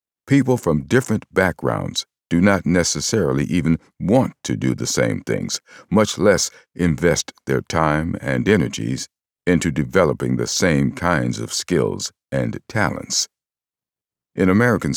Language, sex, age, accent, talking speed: English, male, 50-69, American, 130 wpm